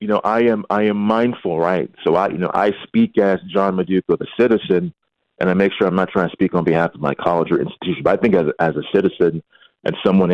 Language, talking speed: English, 255 wpm